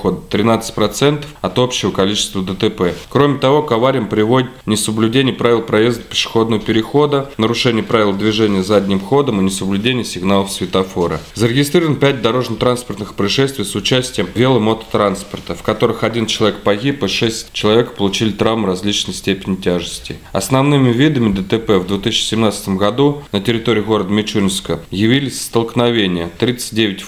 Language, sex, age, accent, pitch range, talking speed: Russian, male, 20-39, native, 100-125 Hz, 130 wpm